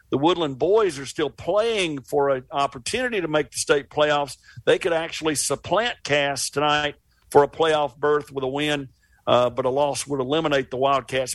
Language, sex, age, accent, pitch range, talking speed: English, male, 50-69, American, 135-175 Hz, 185 wpm